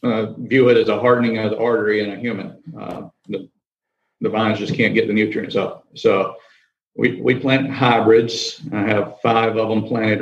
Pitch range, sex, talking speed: 105-115 Hz, male, 195 wpm